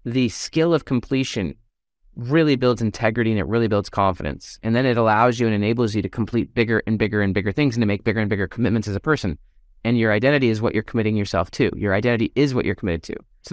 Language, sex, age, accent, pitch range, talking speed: English, male, 20-39, American, 110-140 Hz, 245 wpm